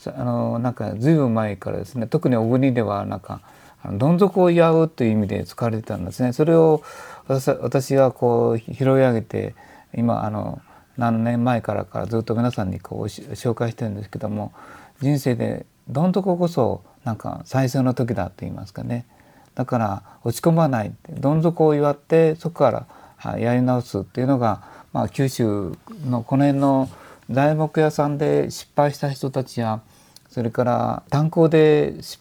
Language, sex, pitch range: Japanese, male, 110-145 Hz